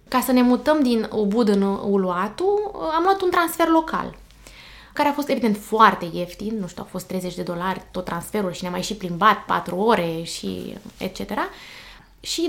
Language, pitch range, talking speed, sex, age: Romanian, 200-285 Hz, 185 wpm, female, 20-39